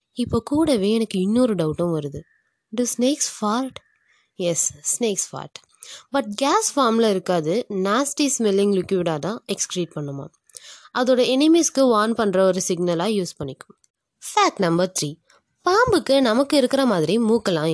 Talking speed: 130 wpm